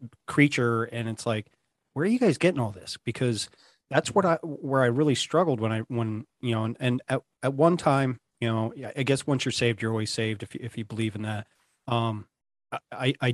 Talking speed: 225 wpm